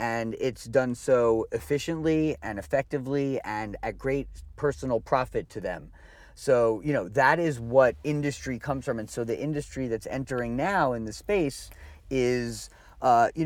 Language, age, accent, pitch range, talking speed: English, 40-59, American, 115-145 Hz, 160 wpm